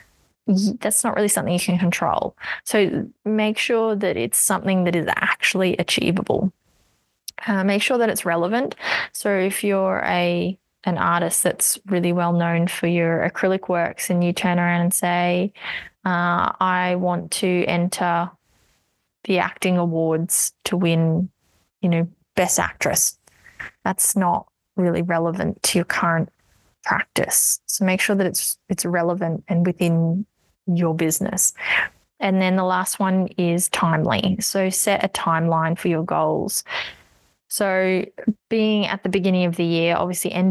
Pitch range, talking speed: 175-205 Hz, 150 wpm